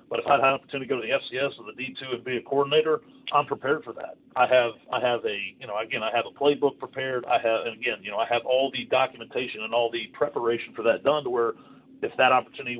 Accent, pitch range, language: American, 125-160 Hz, English